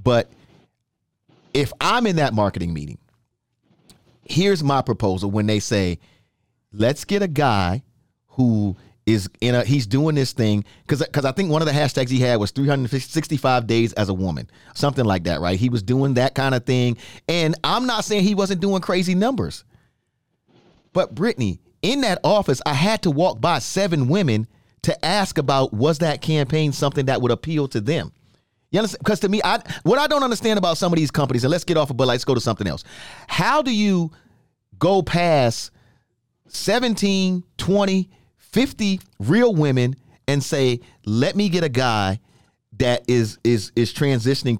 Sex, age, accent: male, 40-59, American